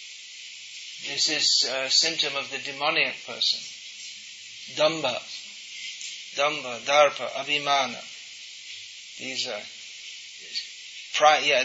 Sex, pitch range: male, 140-160 Hz